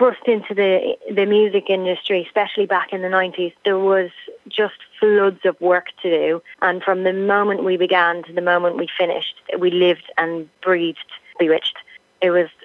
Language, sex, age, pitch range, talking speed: English, female, 30-49, 170-185 Hz, 170 wpm